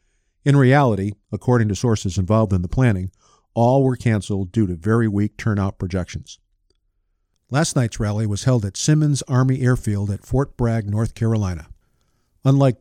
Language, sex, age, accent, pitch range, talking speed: English, male, 50-69, American, 100-125 Hz, 155 wpm